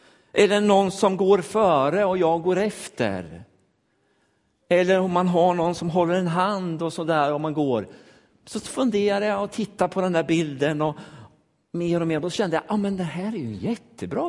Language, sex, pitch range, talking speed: Swedish, male, 145-205 Hz, 195 wpm